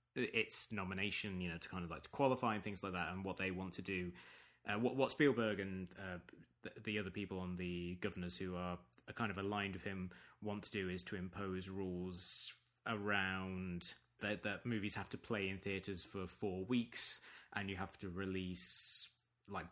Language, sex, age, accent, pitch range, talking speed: English, male, 20-39, British, 95-115 Hz, 195 wpm